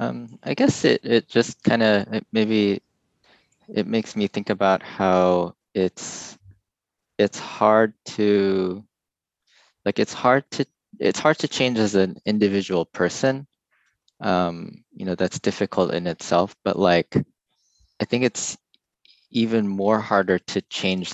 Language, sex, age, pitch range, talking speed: English, male, 20-39, 90-105 Hz, 135 wpm